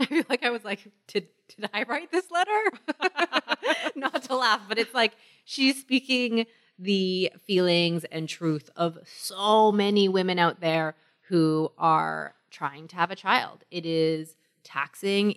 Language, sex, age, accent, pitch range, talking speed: English, female, 20-39, American, 160-220 Hz, 155 wpm